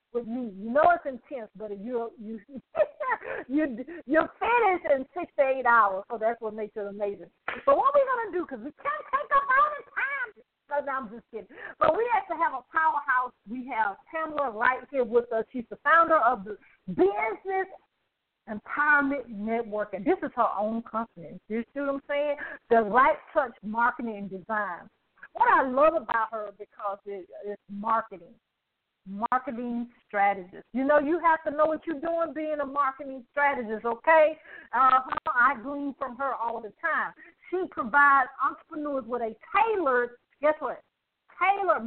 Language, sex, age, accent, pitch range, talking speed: English, female, 50-69, American, 230-325 Hz, 180 wpm